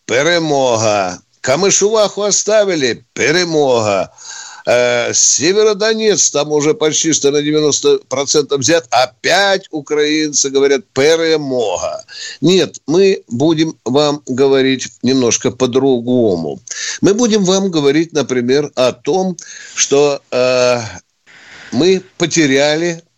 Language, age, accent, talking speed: Russian, 60-79, native, 90 wpm